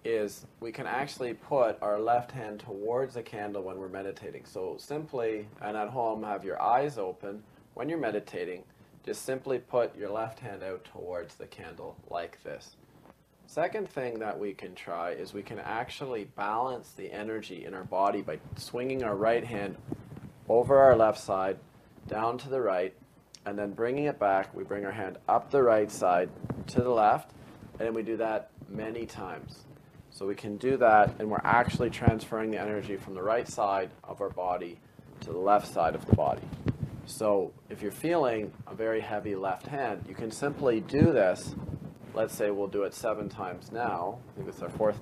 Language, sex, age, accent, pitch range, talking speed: English, male, 40-59, American, 100-125 Hz, 190 wpm